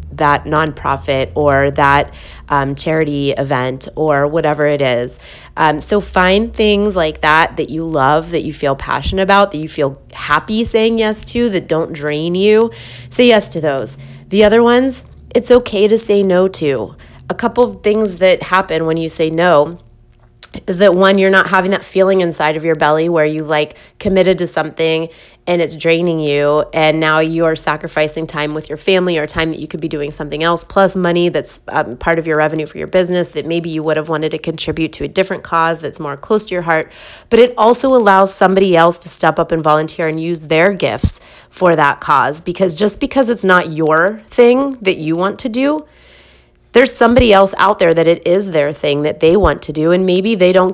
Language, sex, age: English, female, 20-39